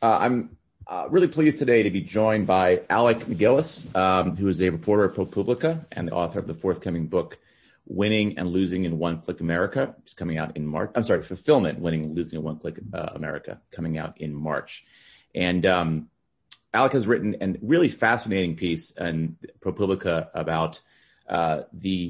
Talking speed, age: 185 wpm, 30-49